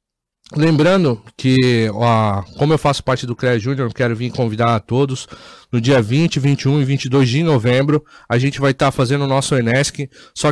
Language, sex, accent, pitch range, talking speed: Portuguese, male, Brazilian, 130-150 Hz, 190 wpm